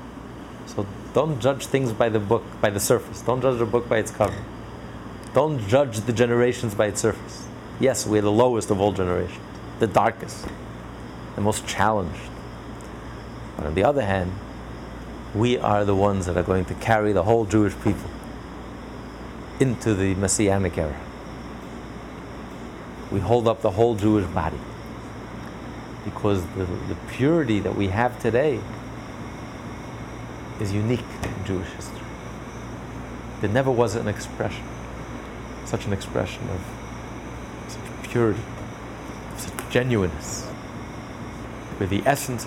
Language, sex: English, male